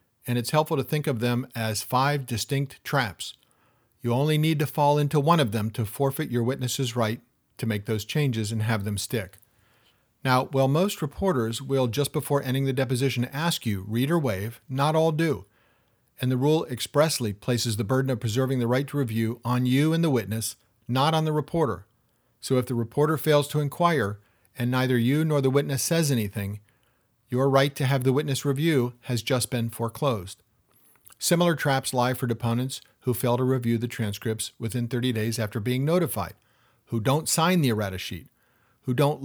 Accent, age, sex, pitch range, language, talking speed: American, 40-59, male, 115-145 Hz, English, 190 wpm